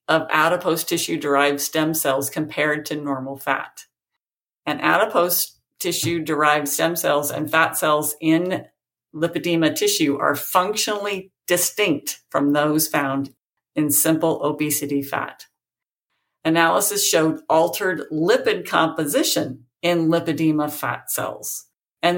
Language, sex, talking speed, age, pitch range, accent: English, female, 110 wpm, 50-69, 150-180 Hz, American